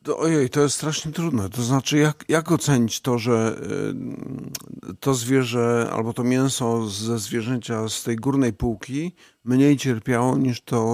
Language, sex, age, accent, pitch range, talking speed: Polish, male, 50-69, native, 120-135 Hz, 150 wpm